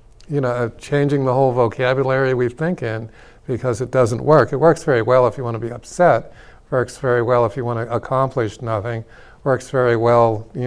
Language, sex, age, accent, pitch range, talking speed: English, male, 50-69, American, 115-140 Hz, 210 wpm